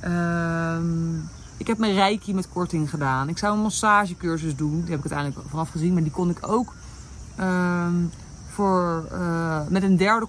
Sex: female